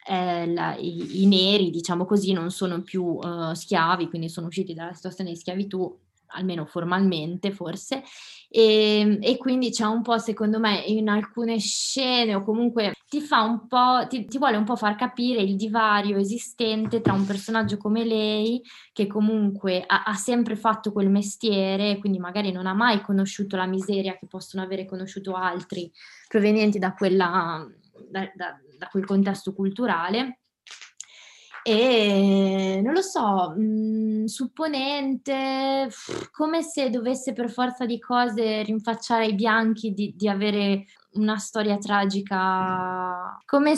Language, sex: Italian, female